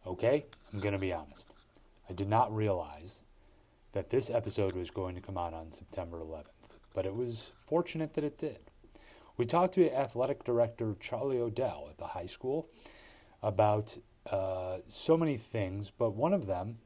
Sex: male